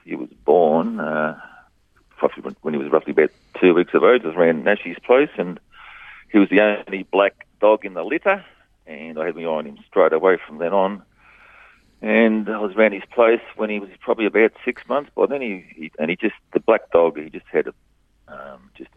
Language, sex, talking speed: English, male, 220 wpm